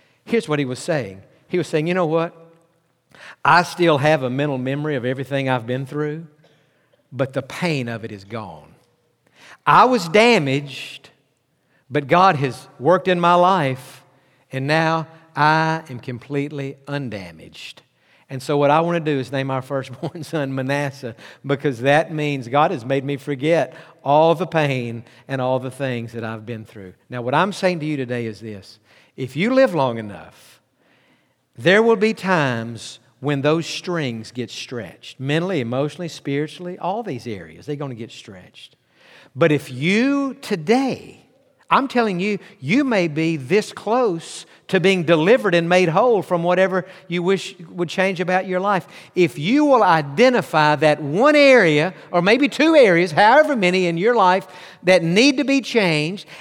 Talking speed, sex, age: 170 wpm, male, 50-69